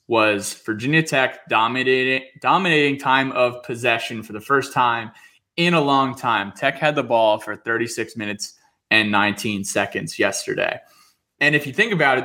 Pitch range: 115-145 Hz